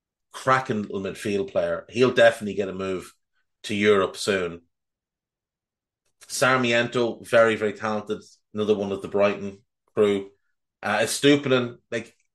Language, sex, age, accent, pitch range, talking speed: English, male, 30-49, Irish, 105-130 Hz, 120 wpm